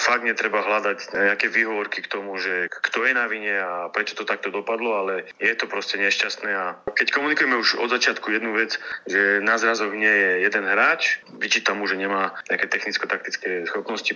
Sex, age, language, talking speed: male, 30-49, Slovak, 185 wpm